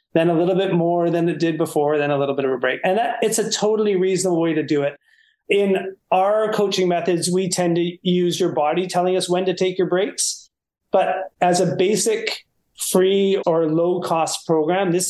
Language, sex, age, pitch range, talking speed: English, male, 30-49, 160-190 Hz, 210 wpm